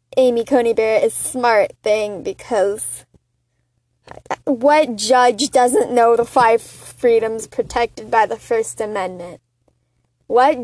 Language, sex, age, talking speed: English, female, 10-29, 115 wpm